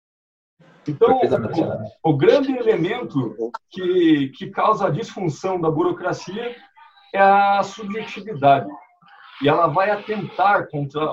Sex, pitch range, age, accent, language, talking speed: male, 150-205 Hz, 40-59, Brazilian, Portuguese, 110 wpm